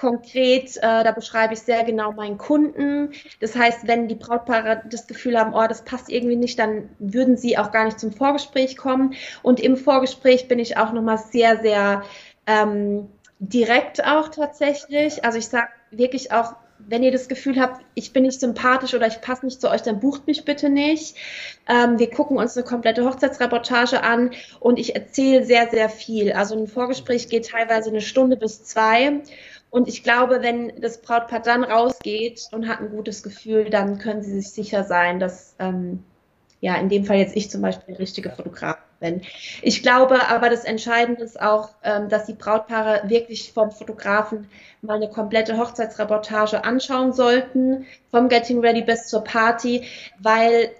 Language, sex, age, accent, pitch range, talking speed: German, female, 20-39, German, 215-255 Hz, 180 wpm